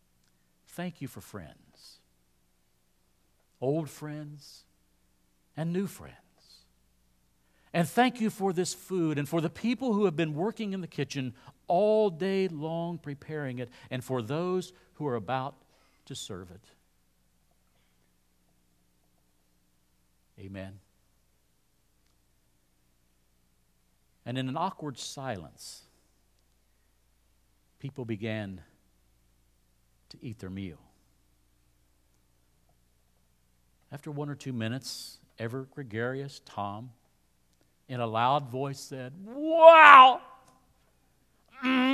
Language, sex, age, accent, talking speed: English, male, 50-69, American, 95 wpm